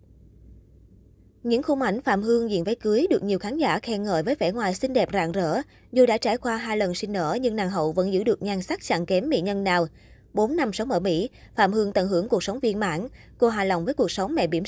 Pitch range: 180-230 Hz